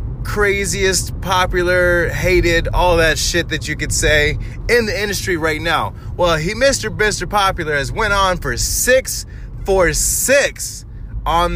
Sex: male